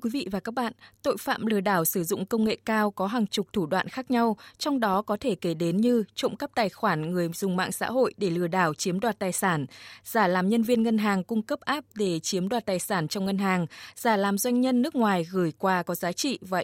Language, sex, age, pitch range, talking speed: Vietnamese, female, 20-39, 185-230 Hz, 265 wpm